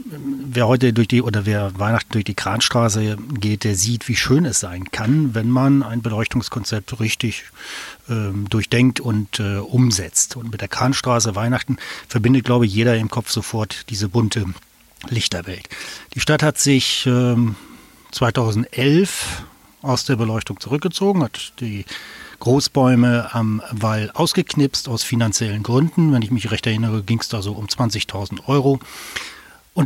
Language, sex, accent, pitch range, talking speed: German, male, German, 105-130 Hz, 150 wpm